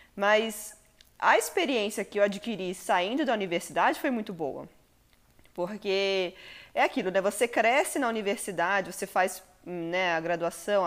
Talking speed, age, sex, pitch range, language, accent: 140 wpm, 20-39, female, 180-235 Hz, Portuguese, Brazilian